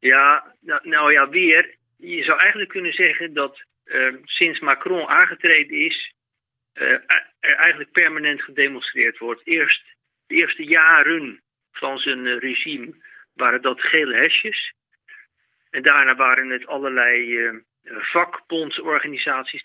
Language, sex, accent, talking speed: Dutch, male, Dutch, 120 wpm